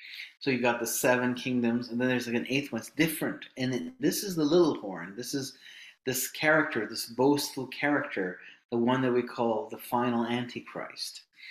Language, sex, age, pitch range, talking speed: English, male, 30-49, 120-150 Hz, 190 wpm